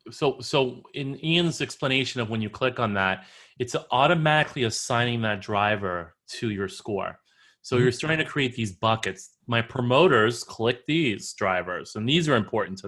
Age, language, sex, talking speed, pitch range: 30-49, English, male, 170 wpm, 105-135 Hz